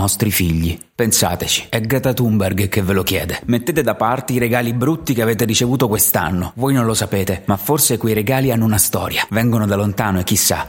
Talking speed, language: 200 wpm, Italian